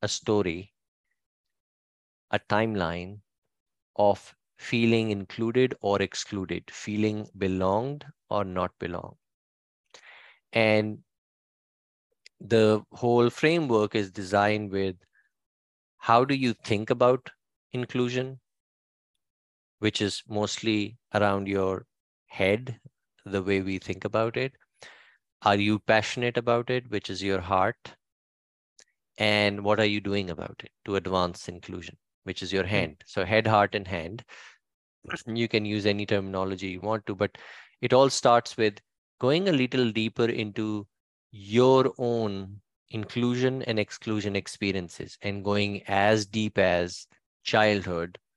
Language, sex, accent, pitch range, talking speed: English, male, Indian, 95-115 Hz, 120 wpm